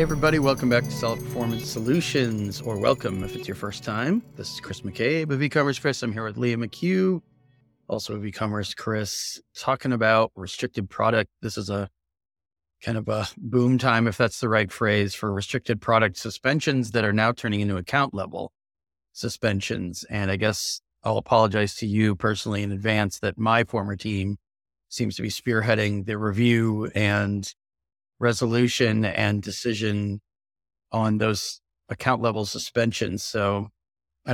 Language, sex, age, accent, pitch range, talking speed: English, male, 30-49, American, 100-120 Hz, 160 wpm